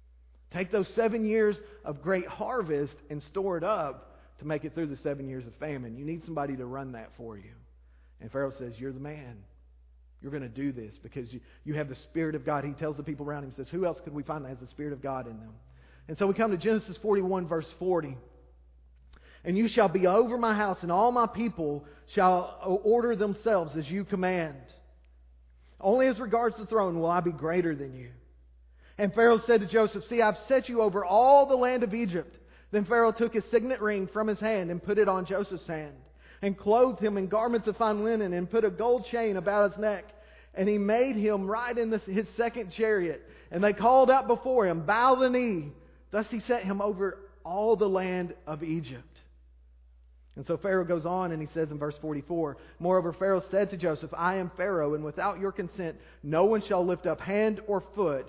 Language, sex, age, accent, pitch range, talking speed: English, male, 40-59, American, 145-215 Hz, 215 wpm